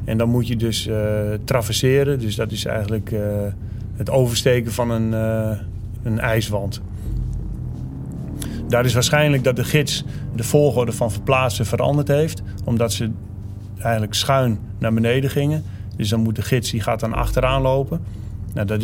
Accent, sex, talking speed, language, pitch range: Dutch, male, 155 wpm, Dutch, 105-125 Hz